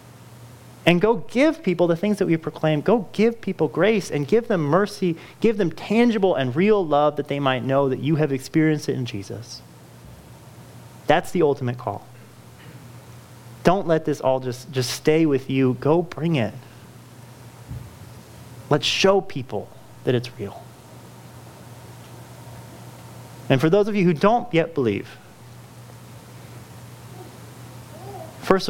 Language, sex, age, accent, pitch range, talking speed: English, male, 30-49, American, 120-165 Hz, 140 wpm